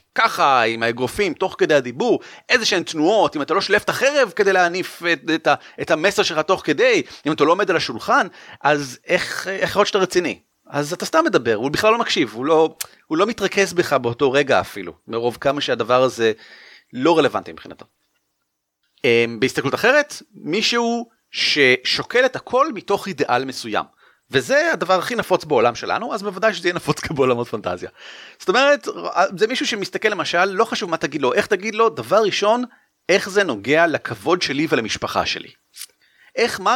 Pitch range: 150-240 Hz